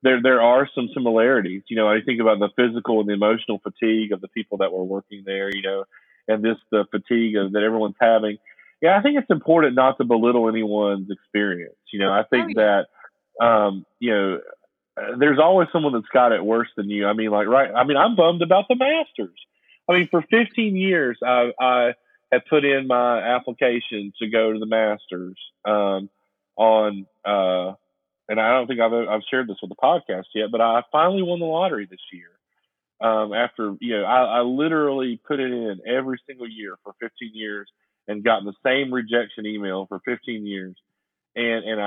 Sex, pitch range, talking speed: male, 105-125 Hz, 200 wpm